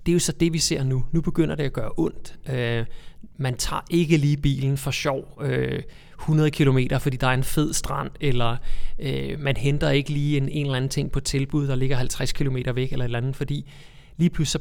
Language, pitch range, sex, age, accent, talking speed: Danish, 125-150 Hz, male, 30-49, native, 215 wpm